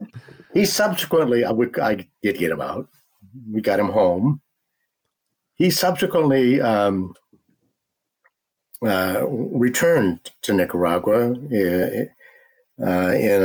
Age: 60-79